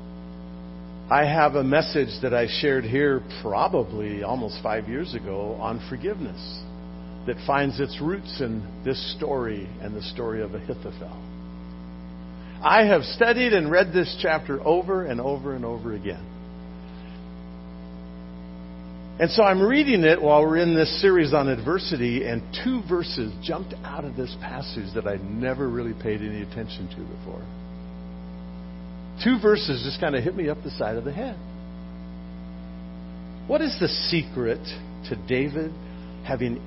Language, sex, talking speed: English, male, 145 wpm